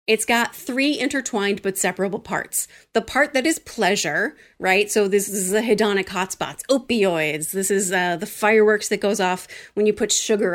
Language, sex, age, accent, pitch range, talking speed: English, female, 30-49, American, 190-235 Hz, 180 wpm